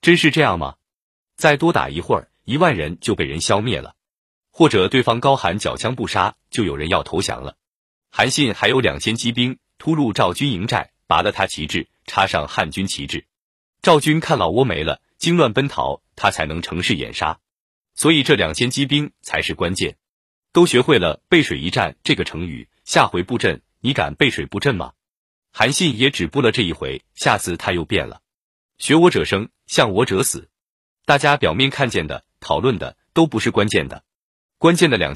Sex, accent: male, native